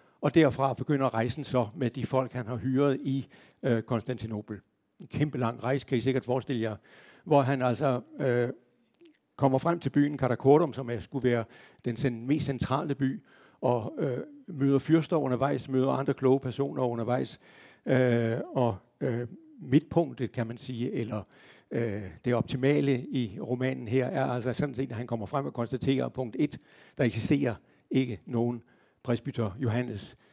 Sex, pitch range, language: male, 120-135 Hz, Danish